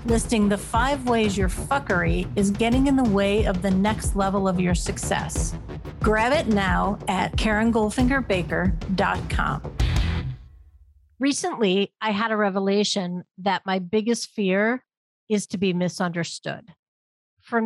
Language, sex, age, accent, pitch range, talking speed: English, female, 50-69, American, 190-225 Hz, 125 wpm